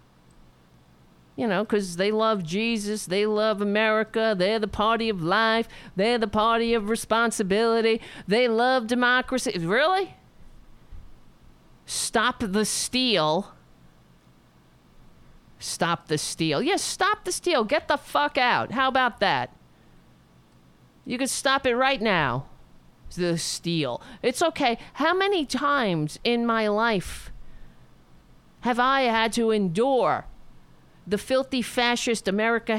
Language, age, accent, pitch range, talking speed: English, 40-59, American, 170-240 Hz, 120 wpm